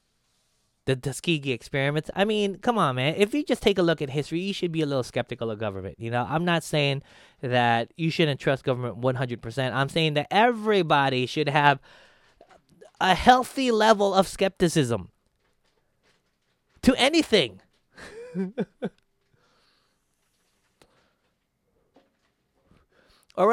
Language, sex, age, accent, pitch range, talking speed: English, male, 20-39, American, 130-200 Hz, 125 wpm